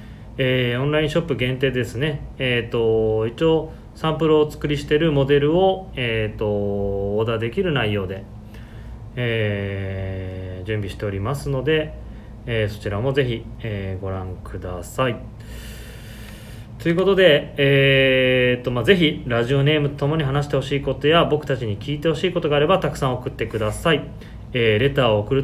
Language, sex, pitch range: Japanese, male, 110-145 Hz